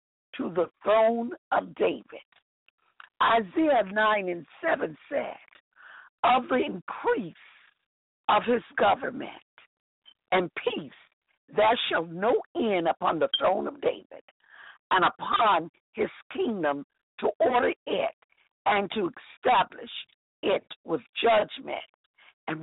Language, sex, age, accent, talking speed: English, female, 60-79, American, 110 wpm